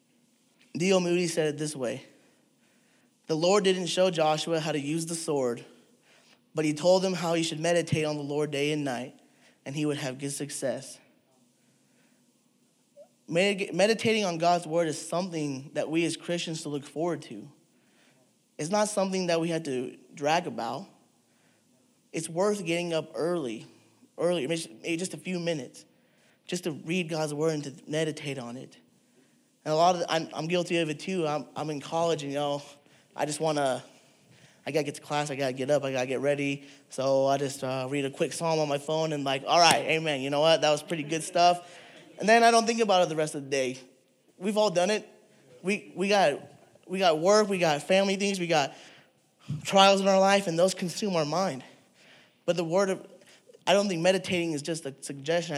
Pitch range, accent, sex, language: 145-185 Hz, American, male, English